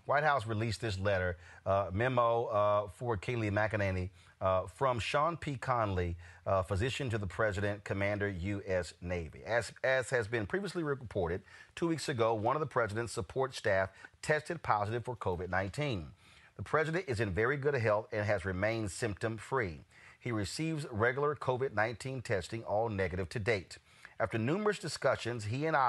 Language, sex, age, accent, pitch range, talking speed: English, male, 40-59, American, 105-135 Hz, 160 wpm